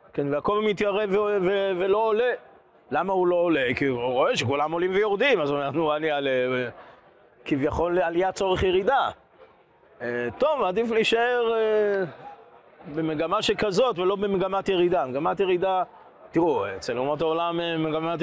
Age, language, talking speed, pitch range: 30-49, Hebrew, 160 wpm, 135-185 Hz